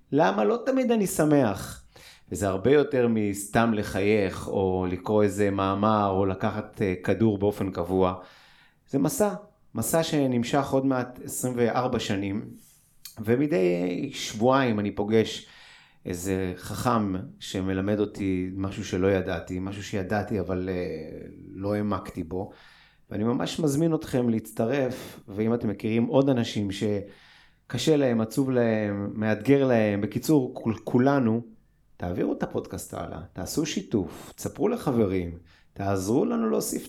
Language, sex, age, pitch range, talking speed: Hebrew, male, 30-49, 95-130 Hz, 115 wpm